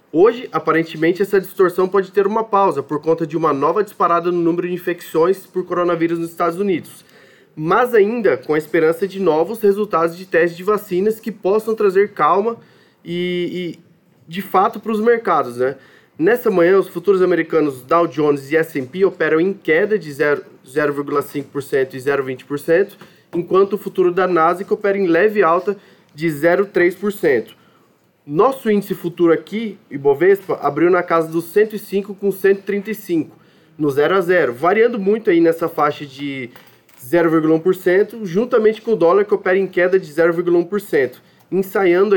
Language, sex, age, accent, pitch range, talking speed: Portuguese, male, 20-39, Brazilian, 160-200 Hz, 150 wpm